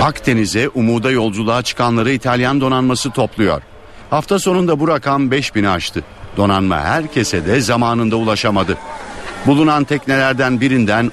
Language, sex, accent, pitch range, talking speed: Turkish, male, native, 110-135 Hz, 115 wpm